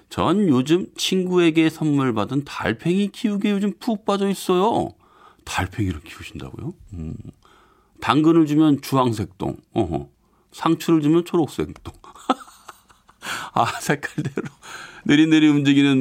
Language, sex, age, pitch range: Korean, male, 40-59, 100-155 Hz